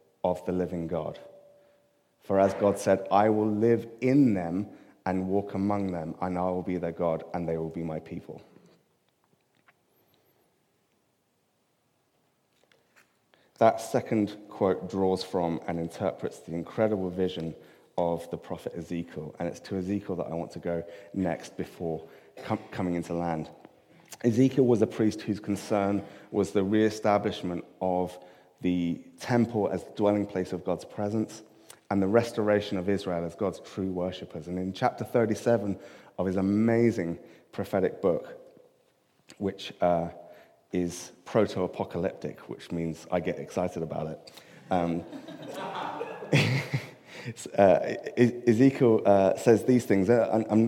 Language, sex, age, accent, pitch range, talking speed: English, male, 30-49, British, 90-110 Hz, 135 wpm